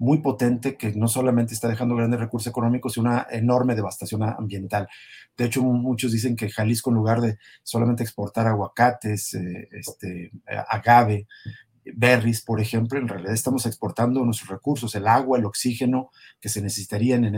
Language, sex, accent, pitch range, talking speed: Spanish, male, Mexican, 110-125 Hz, 155 wpm